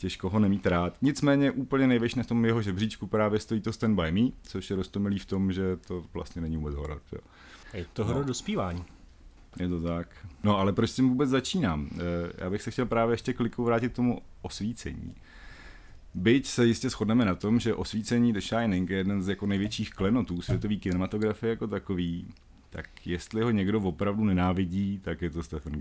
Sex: male